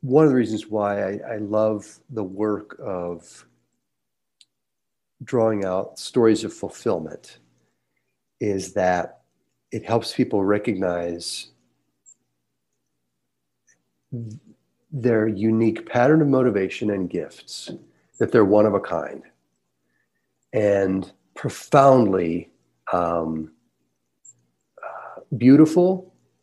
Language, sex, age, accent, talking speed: English, male, 50-69, American, 90 wpm